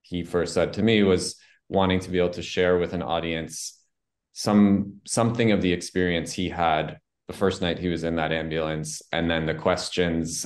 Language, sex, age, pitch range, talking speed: English, male, 20-39, 85-95 Hz, 195 wpm